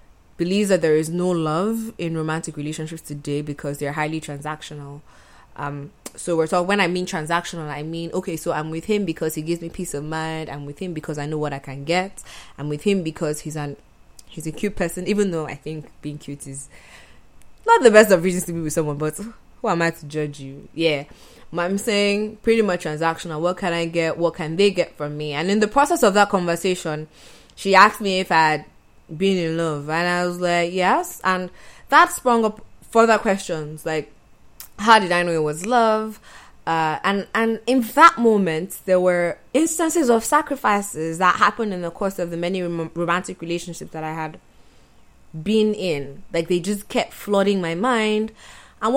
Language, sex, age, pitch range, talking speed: English, female, 20-39, 160-215 Hz, 200 wpm